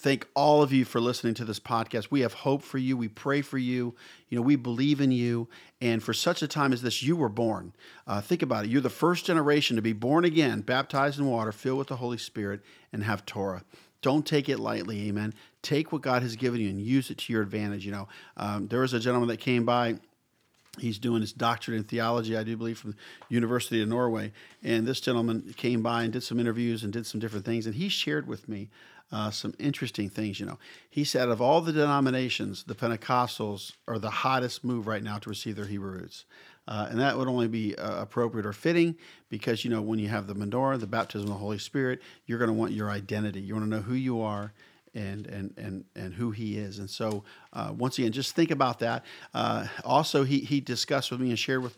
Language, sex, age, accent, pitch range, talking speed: English, male, 50-69, American, 110-135 Hz, 240 wpm